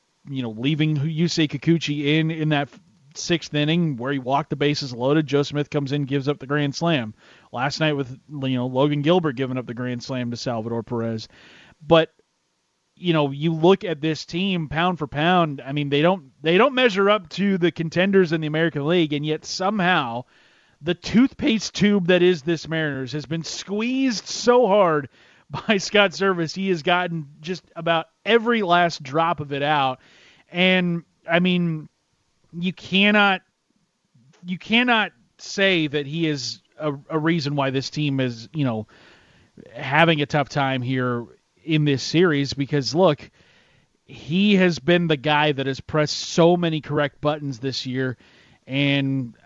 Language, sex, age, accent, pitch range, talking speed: English, male, 30-49, American, 140-175 Hz, 170 wpm